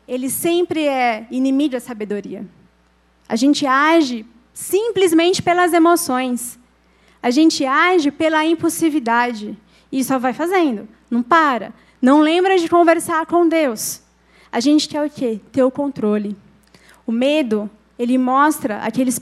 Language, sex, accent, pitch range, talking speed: Portuguese, female, Brazilian, 240-305 Hz, 130 wpm